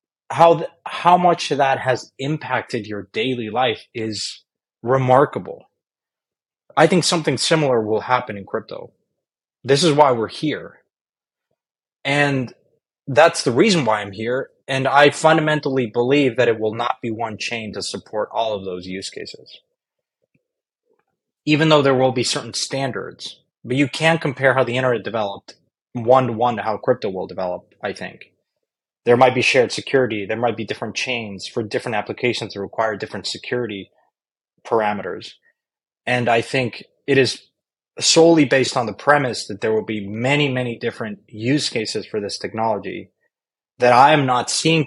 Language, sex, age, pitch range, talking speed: English, male, 20-39, 115-145 Hz, 160 wpm